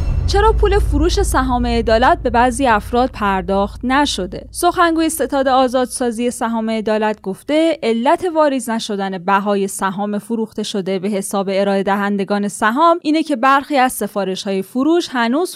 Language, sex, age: Persian, female, 20-39